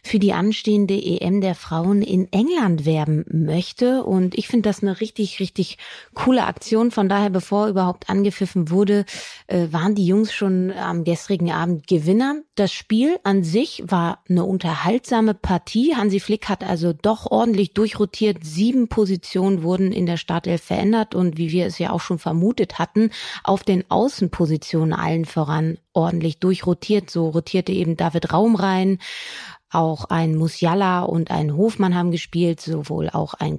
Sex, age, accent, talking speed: female, 30-49, German, 155 wpm